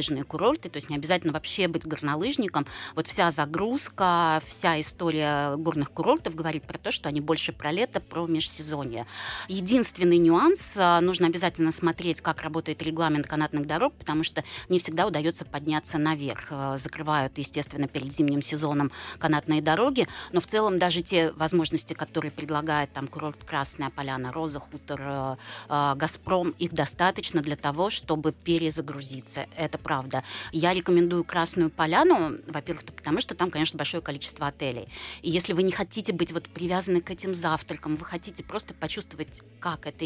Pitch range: 150-175 Hz